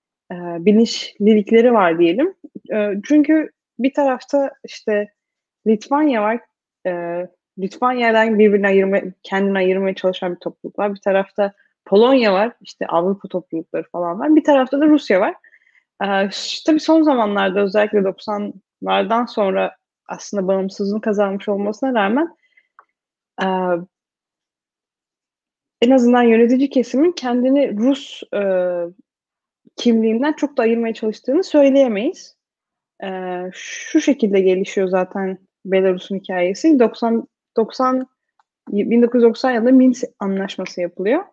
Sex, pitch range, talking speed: female, 195-265 Hz, 110 wpm